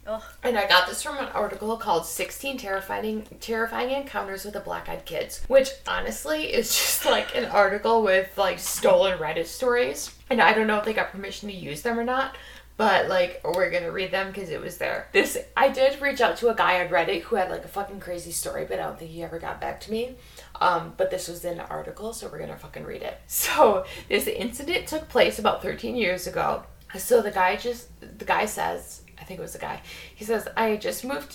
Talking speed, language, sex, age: 230 wpm, English, female, 20-39